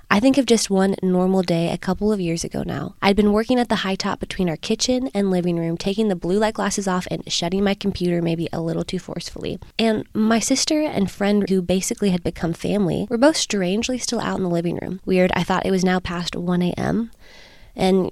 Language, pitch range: English, 180-215 Hz